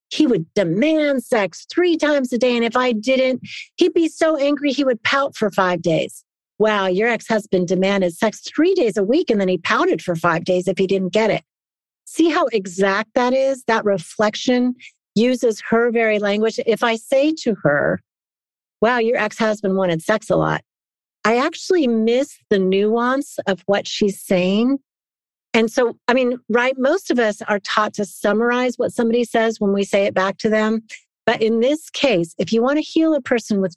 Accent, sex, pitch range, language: American, female, 190-250 Hz, English